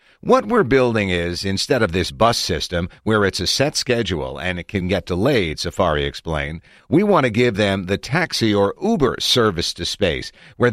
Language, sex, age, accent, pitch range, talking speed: English, male, 50-69, American, 90-120 Hz, 190 wpm